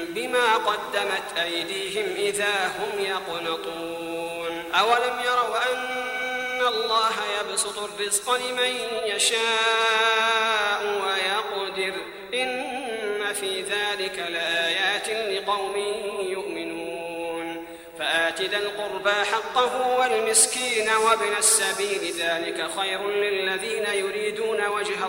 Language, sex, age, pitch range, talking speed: Arabic, male, 40-59, 190-235 Hz, 75 wpm